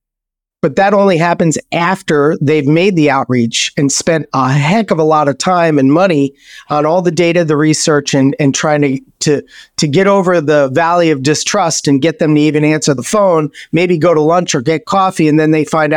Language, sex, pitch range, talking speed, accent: English, male, 150-175 Hz, 215 wpm, American